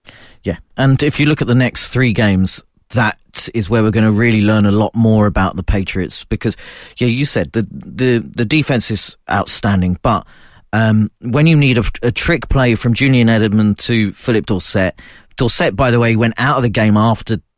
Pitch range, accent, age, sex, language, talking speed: 105-130 Hz, British, 40-59, male, English, 200 wpm